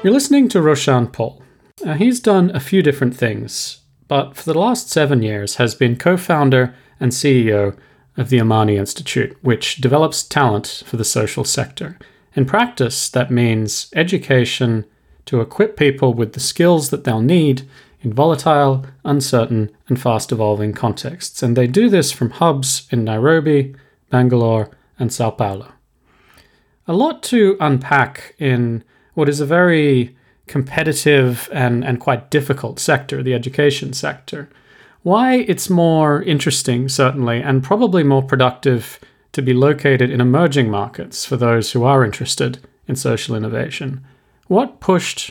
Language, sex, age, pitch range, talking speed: English, male, 30-49, 120-150 Hz, 145 wpm